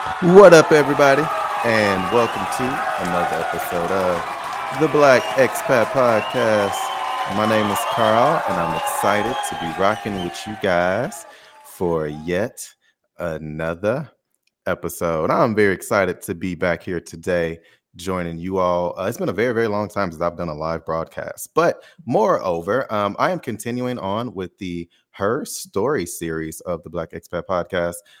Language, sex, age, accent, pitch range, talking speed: English, male, 30-49, American, 85-110 Hz, 155 wpm